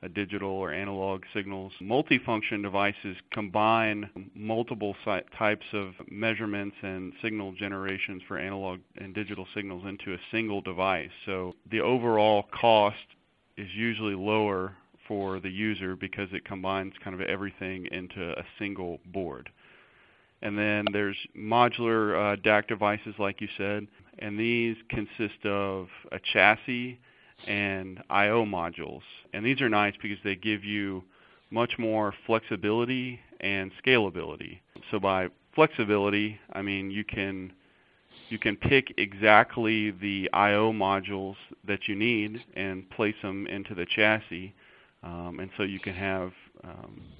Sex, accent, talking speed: male, American, 135 wpm